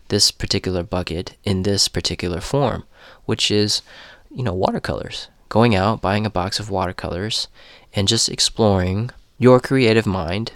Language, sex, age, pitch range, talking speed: English, male, 20-39, 100-115 Hz, 140 wpm